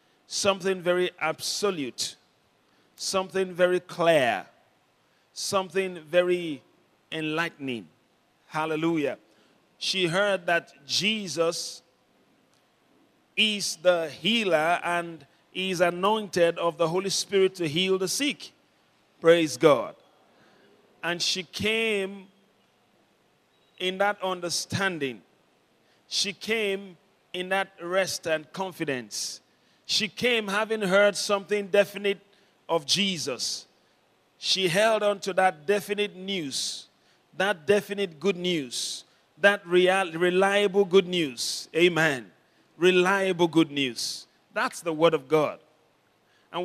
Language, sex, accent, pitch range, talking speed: English, male, Nigerian, 165-200 Hz, 100 wpm